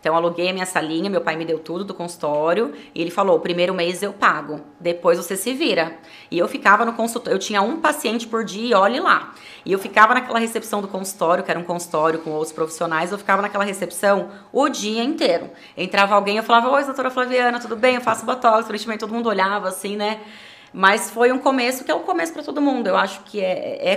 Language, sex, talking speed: Portuguese, female, 235 wpm